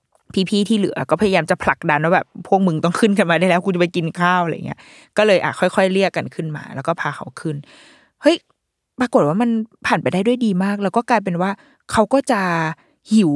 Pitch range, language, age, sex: 155-205 Hz, Thai, 20-39, female